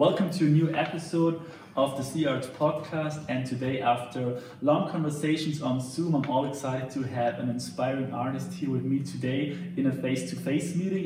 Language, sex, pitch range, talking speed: English, male, 130-155 Hz, 175 wpm